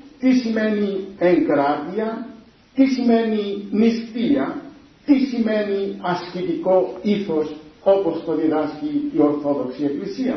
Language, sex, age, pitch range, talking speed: Greek, male, 50-69, 170-265 Hz, 95 wpm